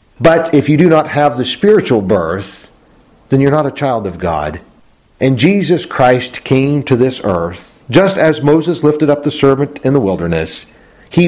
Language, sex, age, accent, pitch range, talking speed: English, male, 50-69, American, 100-145 Hz, 180 wpm